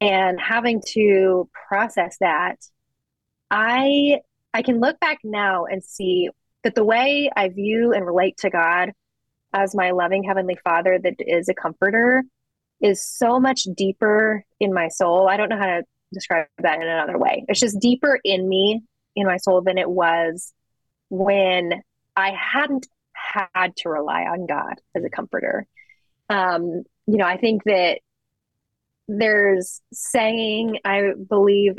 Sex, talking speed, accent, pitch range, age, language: female, 150 wpm, American, 175-215 Hz, 20-39, English